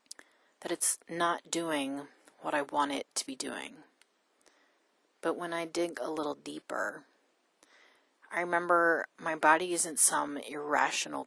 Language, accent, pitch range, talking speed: English, American, 145-170 Hz, 135 wpm